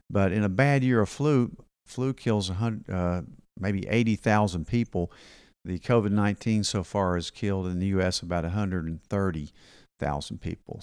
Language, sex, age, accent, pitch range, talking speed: English, male, 50-69, American, 90-115 Hz, 140 wpm